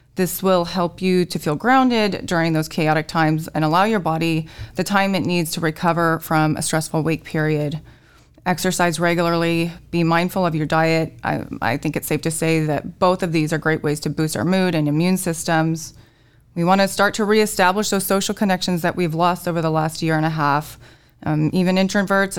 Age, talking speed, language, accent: 20-39, 200 wpm, English, American